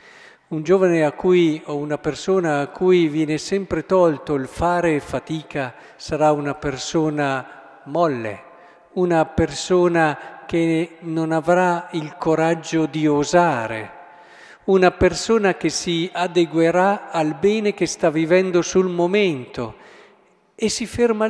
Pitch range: 140-180 Hz